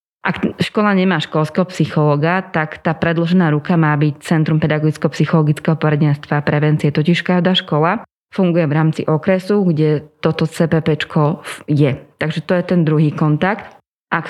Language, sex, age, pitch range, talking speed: Slovak, female, 20-39, 155-175 Hz, 140 wpm